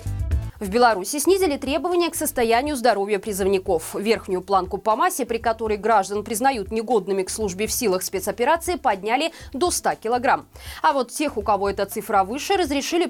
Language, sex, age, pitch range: Russian, female, 20-39, 210-290 Hz